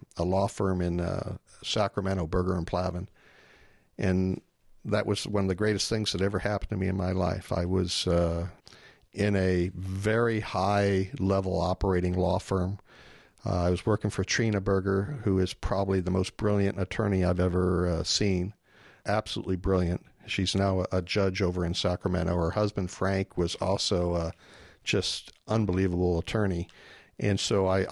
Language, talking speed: English, 160 wpm